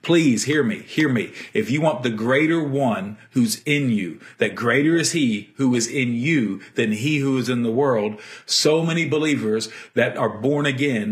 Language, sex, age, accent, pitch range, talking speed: English, male, 50-69, American, 120-150 Hz, 195 wpm